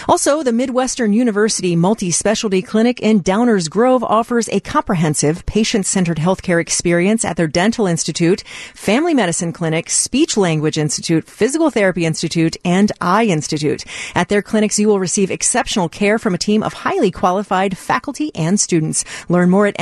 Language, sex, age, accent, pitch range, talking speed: English, female, 40-59, American, 175-235 Hz, 155 wpm